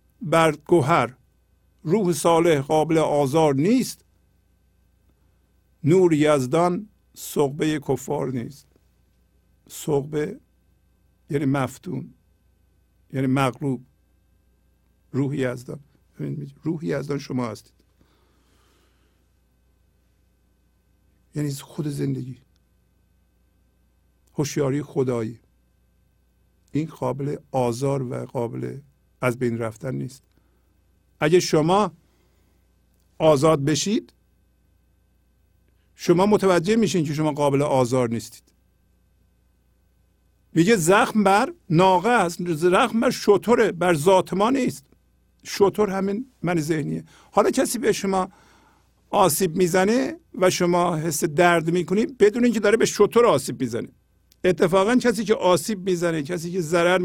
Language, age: Persian, 50-69